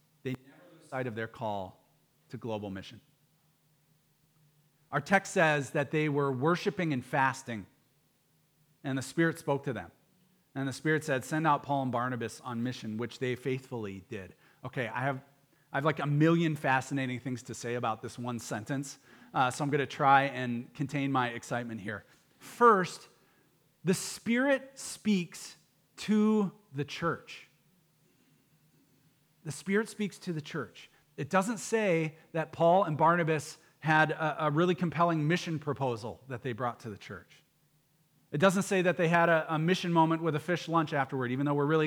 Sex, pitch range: male, 135-175 Hz